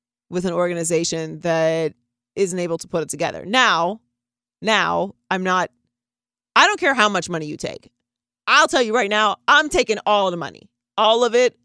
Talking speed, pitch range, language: 180 wpm, 165-220 Hz, English